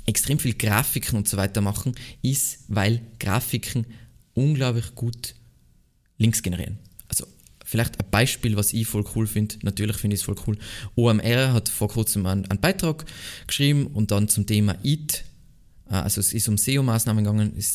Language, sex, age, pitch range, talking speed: German, male, 20-39, 105-130 Hz, 170 wpm